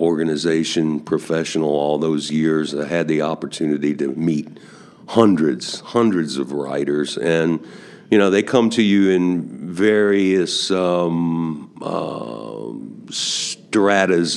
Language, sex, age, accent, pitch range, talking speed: English, male, 50-69, American, 80-95 Hz, 115 wpm